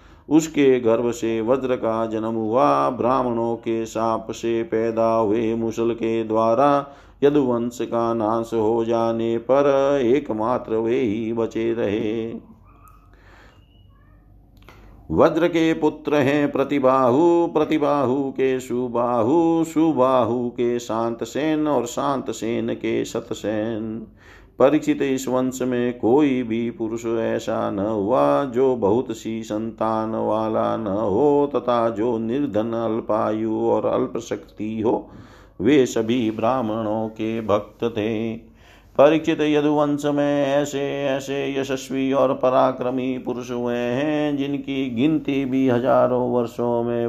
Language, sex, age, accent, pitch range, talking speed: Hindi, male, 50-69, native, 110-130 Hz, 115 wpm